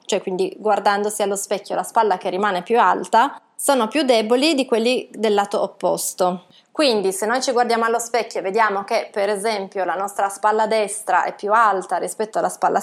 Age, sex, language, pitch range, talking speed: 20-39, female, Italian, 190-230 Hz, 190 wpm